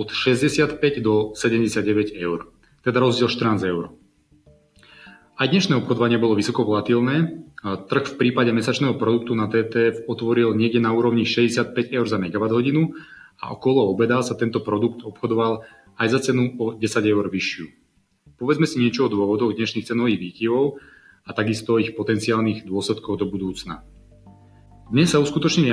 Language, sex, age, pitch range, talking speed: Slovak, male, 30-49, 105-125 Hz, 150 wpm